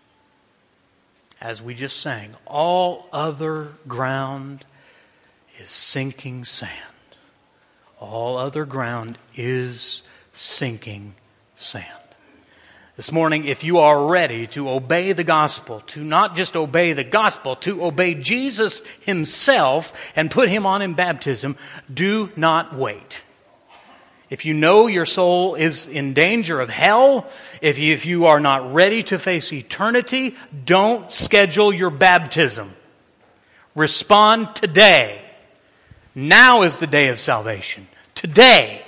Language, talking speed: English, 115 wpm